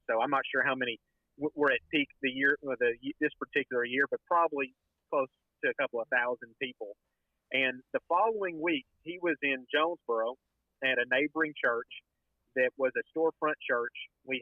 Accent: American